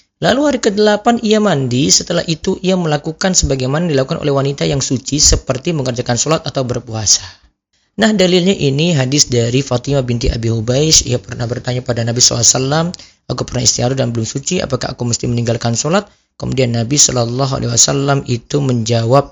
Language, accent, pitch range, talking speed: Indonesian, native, 120-170 Hz, 155 wpm